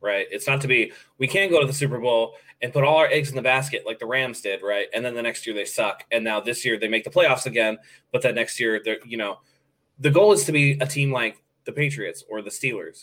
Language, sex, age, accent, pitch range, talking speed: English, male, 20-39, American, 115-145 Hz, 280 wpm